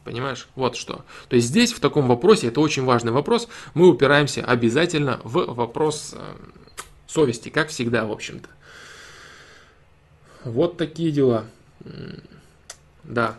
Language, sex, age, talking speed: Russian, male, 20-39, 120 wpm